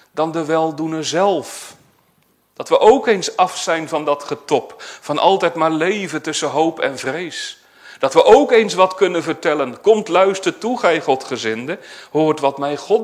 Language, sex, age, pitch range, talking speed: Dutch, male, 40-59, 130-165 Hz, 170 wpm